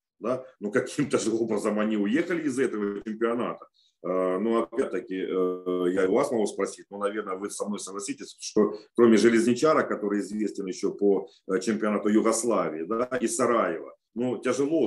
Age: 40-59